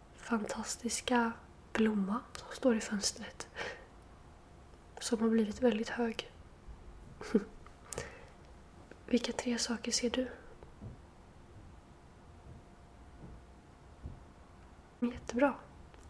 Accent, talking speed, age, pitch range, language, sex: native, 65 wpm, 30-49, 210-240 Hz, Swedish, female